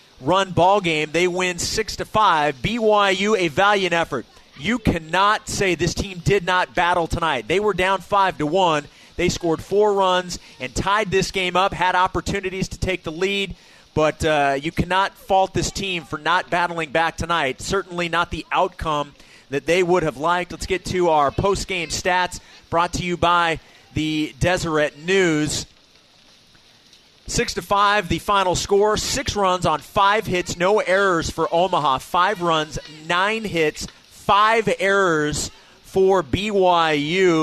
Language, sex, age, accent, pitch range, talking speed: English, male, 30-49, American, 155-190 Hz, 160 wpm